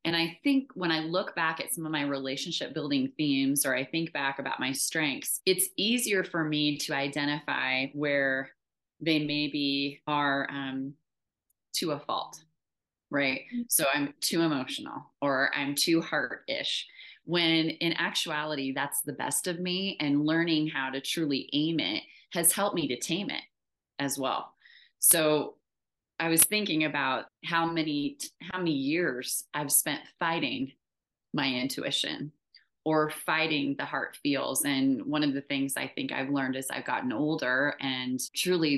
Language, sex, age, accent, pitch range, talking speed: English, female, 30-49, American, 140-170 Hz, 160 wpm